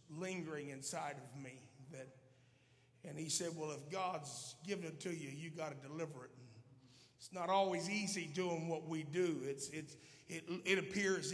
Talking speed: 175 wpm